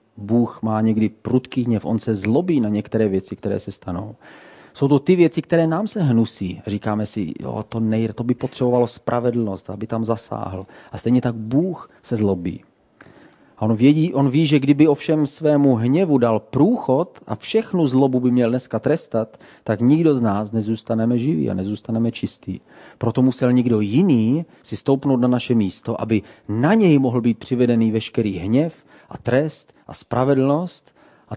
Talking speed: 165 wpm